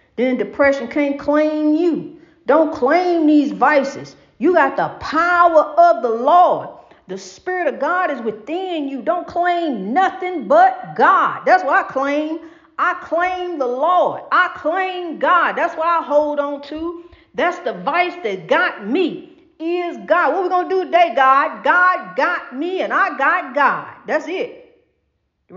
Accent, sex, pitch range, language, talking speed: American, female, 275-340 Hz, English, 165 wpm